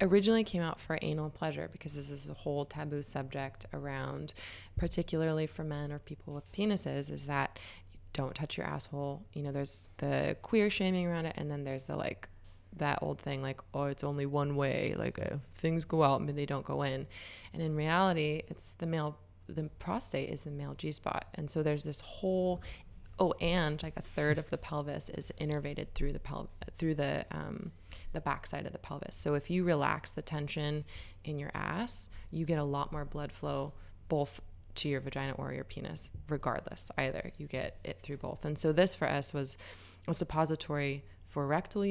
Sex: female